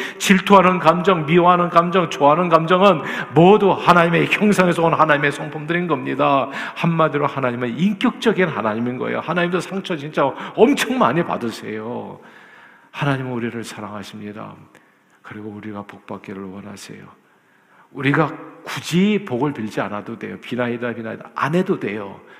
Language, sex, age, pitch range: Korean, male, 50-69, 120-170 Hz